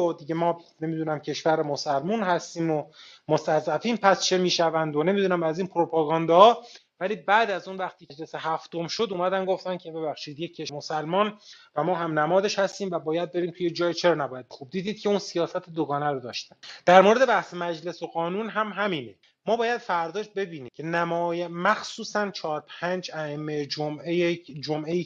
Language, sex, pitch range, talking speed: Persian, male, 150-185 Hz, 175 wpm